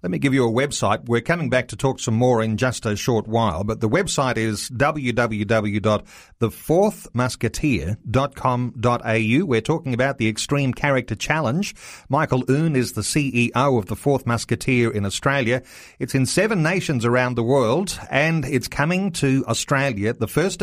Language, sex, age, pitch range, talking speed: English, male, 40-59, 115-145 Hz, 160 wpm